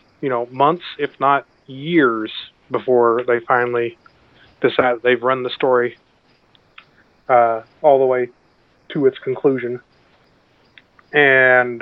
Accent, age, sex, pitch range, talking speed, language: American, 30-49, male, 120-155 Hz, 110 wpm, English